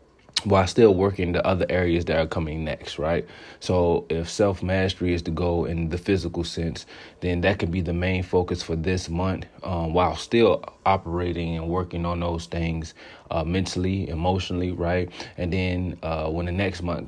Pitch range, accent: 85-95 Hz, American